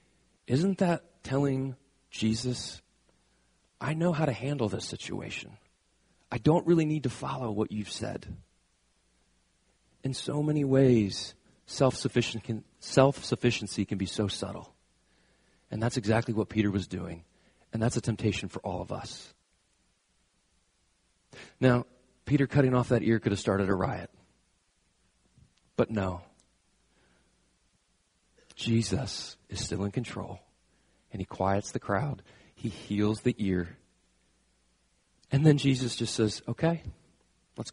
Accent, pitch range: American, 100-135 Hz